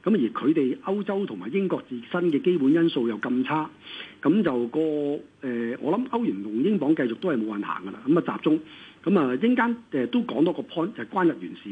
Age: 50-69